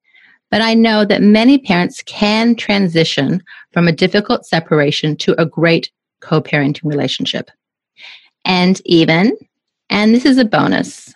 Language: English